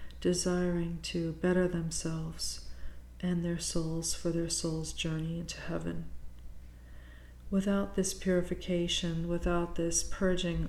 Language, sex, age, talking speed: English, female, 40-59, 105 wpm